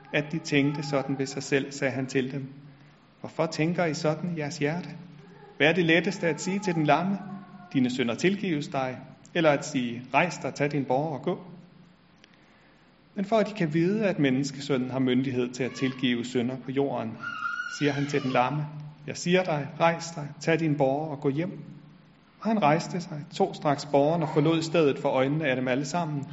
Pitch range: 135-160 Hz